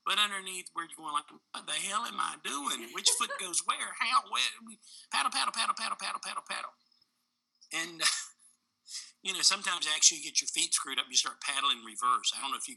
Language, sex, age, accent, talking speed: English, male, 50-69, American, 215 wpm